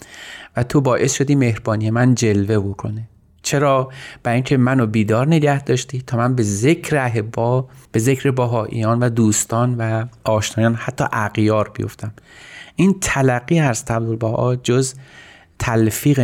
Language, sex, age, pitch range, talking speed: Persian, male, 30-49, 105-125 Hz, 120 wpm